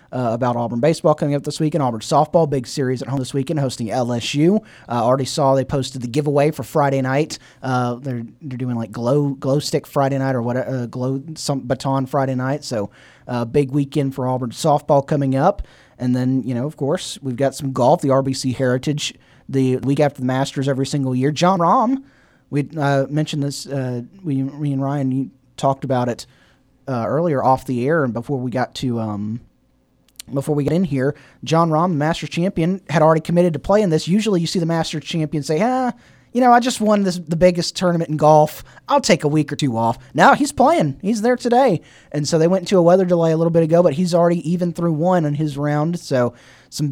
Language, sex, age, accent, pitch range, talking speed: English, male, 30-49, American, 130-160 Hz, 225 wpm